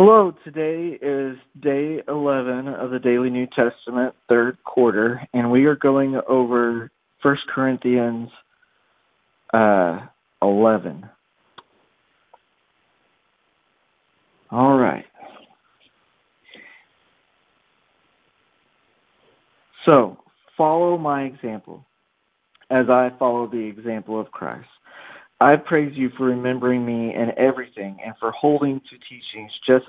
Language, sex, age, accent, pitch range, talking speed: English, male, 50-69, American, 120-140 Hz, 95 wpm